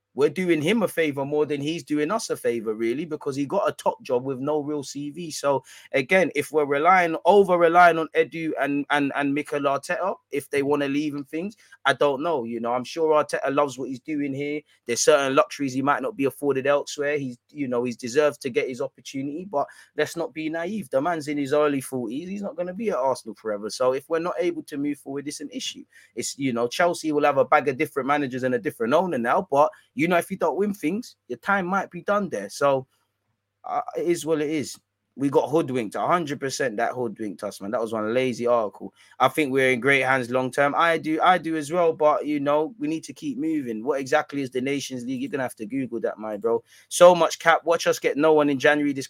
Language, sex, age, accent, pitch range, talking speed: English, male, 20-39, British, 130-165 Hz, 245 wpm